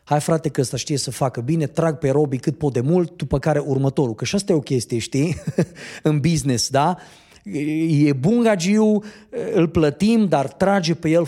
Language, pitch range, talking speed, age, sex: Romanian, 130-180 Hz, 195 wpm, 30-49, male